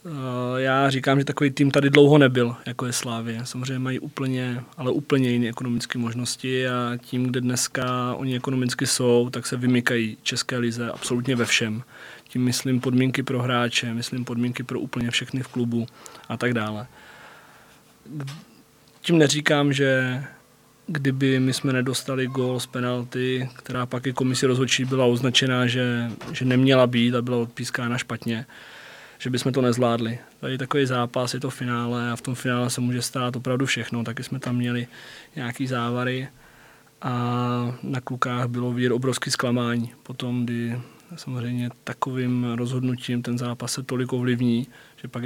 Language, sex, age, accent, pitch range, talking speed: Czech, male, 20-39, native, 120-130 Hz, 155 wpm